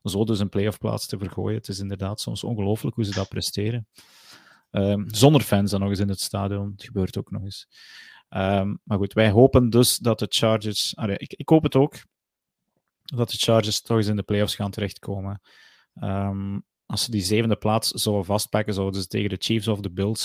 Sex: male